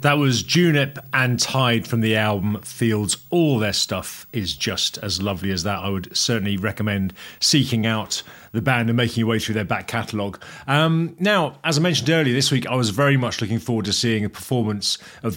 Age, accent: 40-59, British